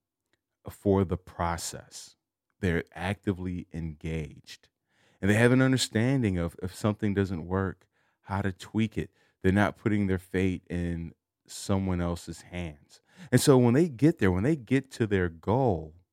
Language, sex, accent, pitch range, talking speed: English, male, American, 90-110 Hz, 155 wpm